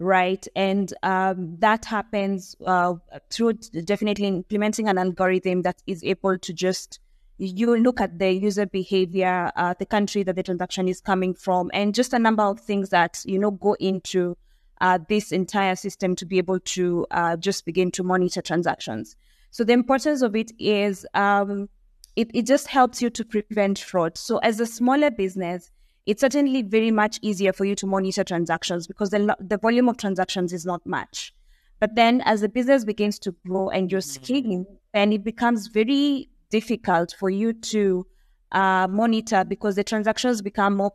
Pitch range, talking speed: 185-215 Hz, 175 wpm